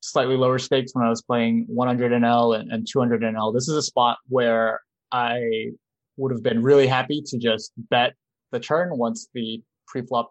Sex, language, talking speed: male, English, 185 wpm